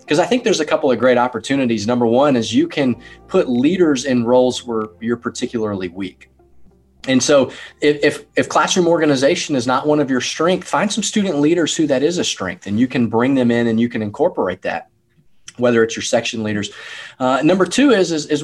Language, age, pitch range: English, 30-49, 105-150 Hz